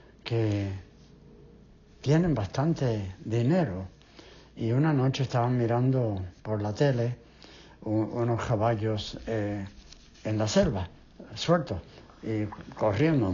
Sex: male